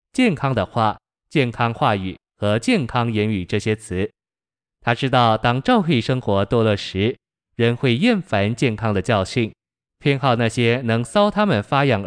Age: 20-39